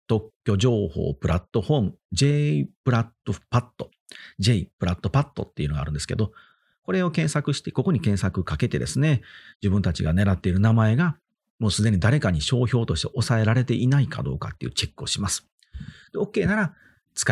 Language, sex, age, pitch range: Japanese, male, 40-59, 85-140 Hz